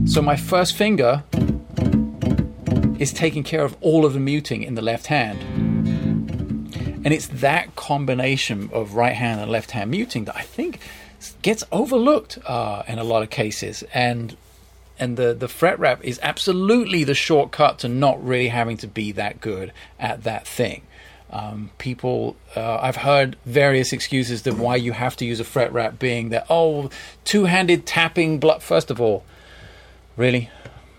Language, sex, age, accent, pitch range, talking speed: English, male, 40-59, British, 105-155 Hz, 165 wpm